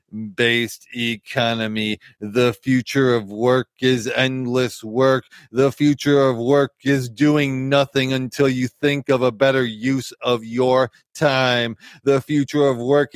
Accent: American